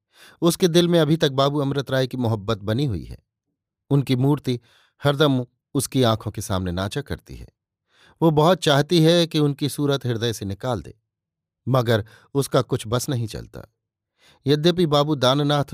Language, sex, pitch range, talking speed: Hindi, male, 110-145 Hz, 165 wpm